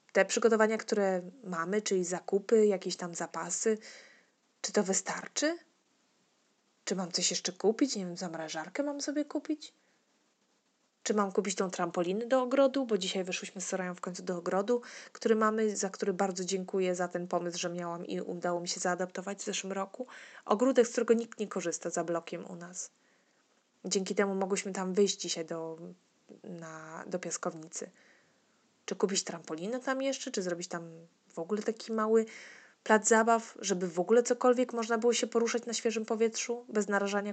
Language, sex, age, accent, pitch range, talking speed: Polish, female, 20-39, native, 180-230 Hz, 165 wpm